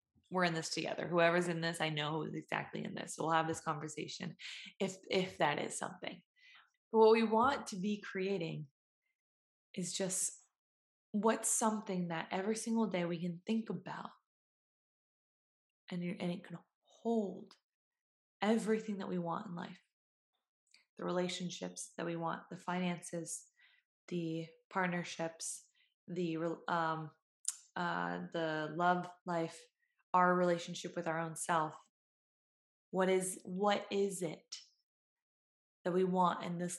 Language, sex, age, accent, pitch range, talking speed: English, female, 20-39, American, 165-215 Hz, 135 wpm